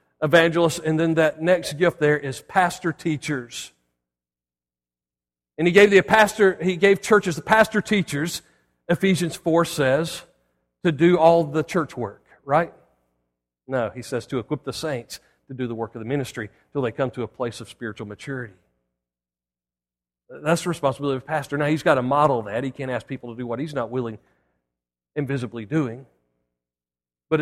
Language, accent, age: English, American, 40-59